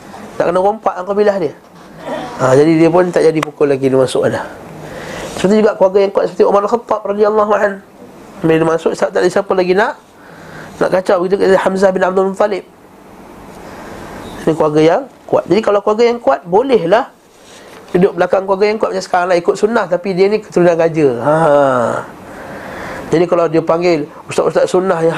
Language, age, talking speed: Malay, 30-49, 180 wpm